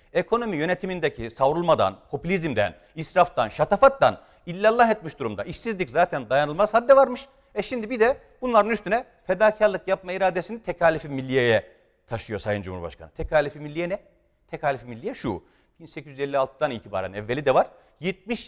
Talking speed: 130 wpm